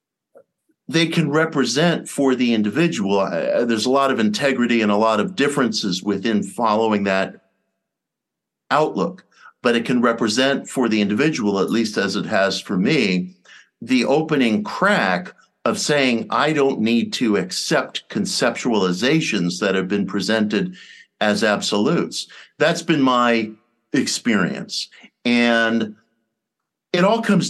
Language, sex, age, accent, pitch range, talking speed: English, male, 50-69, American, 100-140 Hz, 130 wpm